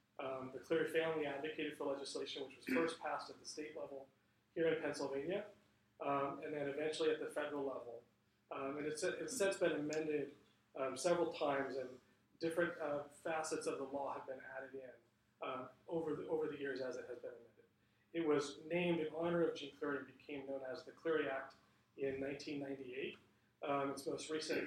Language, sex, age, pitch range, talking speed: English, male, 30-49, 135-160 Hz, 180 wpm